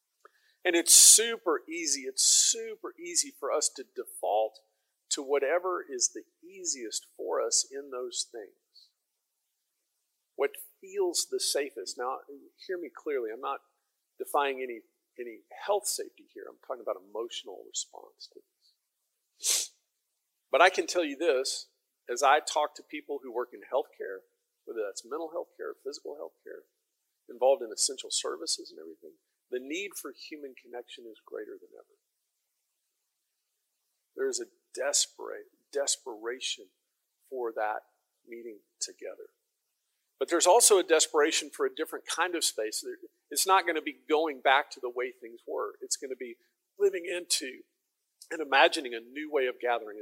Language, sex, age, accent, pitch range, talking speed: English, male, 50-69, American, 335-440 Hz, 155 wpm